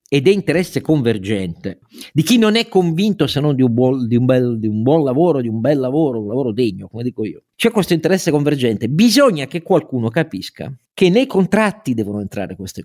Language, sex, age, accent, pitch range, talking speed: Italian, male, 50-69, native, 120-175 Hz, 210 wpm